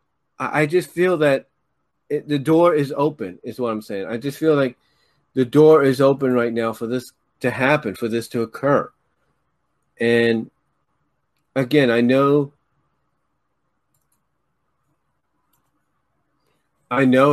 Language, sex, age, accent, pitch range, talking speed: English, male, 30-49, American, 120-145 Hz, 125 wpm